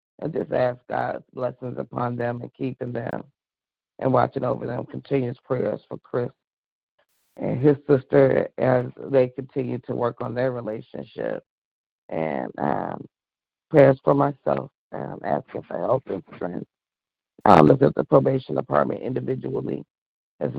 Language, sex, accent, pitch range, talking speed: English, female, American, 120-135 Hz, 140 wpm